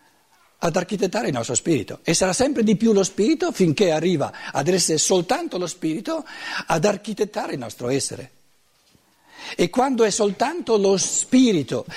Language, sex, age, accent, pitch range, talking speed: Italian, male, 60-79, native, 145-195 Hz, 150 wpm